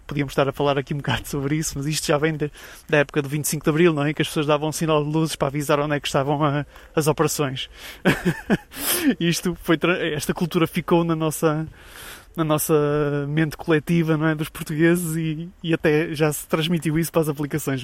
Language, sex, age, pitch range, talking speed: Portuguese, male, 20-39, 145-175 Hz, 220 wpm